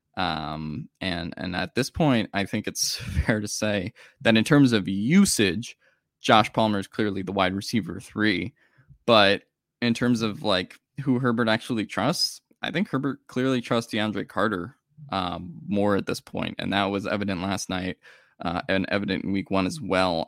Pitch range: 95-125 Hz